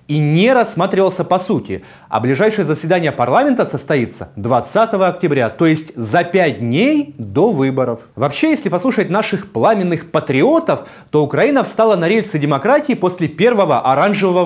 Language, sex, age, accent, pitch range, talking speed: Russian, male, 30-49, native, 150-215 Hz, 140 wpm